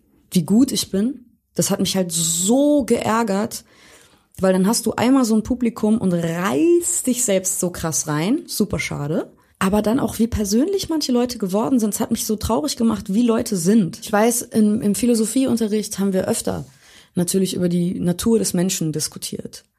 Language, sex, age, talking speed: German, female, 20-39, 180 wpm